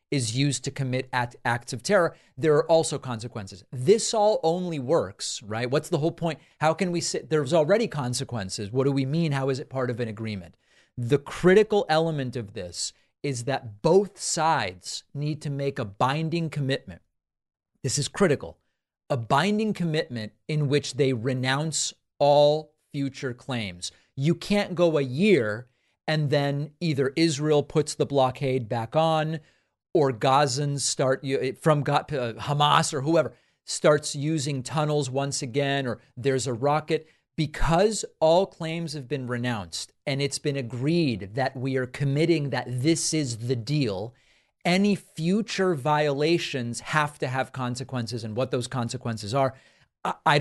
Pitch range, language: 125-155 Hz, English